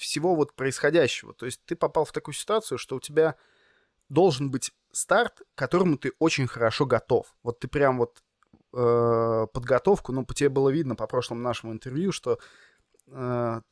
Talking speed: 165 wpm